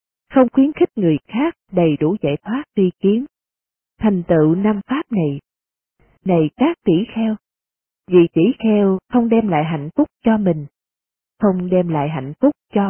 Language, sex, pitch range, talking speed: Vietnamese, female, 160-230 Hz, 165 wpm